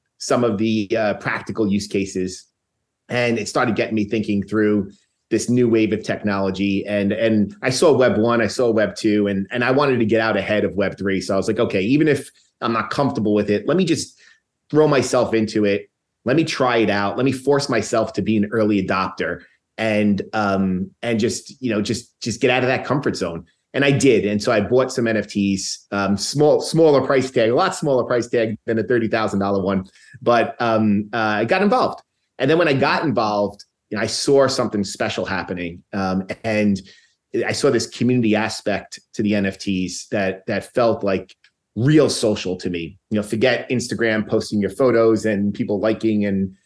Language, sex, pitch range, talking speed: English, male, 100-120 Hz, 205 wpm